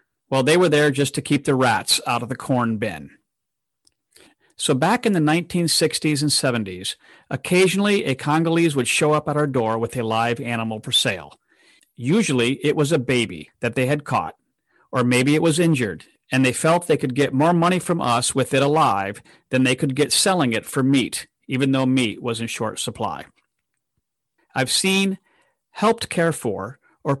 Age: 50-69